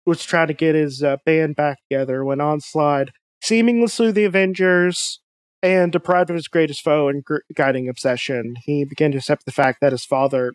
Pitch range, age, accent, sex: 145-175 Hz, 20-39, American, male